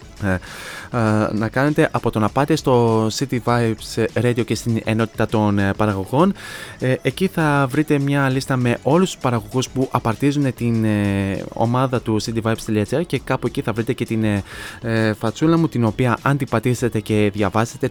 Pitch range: 110-135 Hz